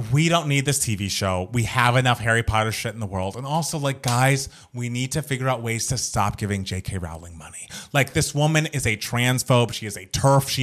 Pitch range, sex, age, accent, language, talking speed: 115-150 Hz, male, 30-49, American, English, 235 wpm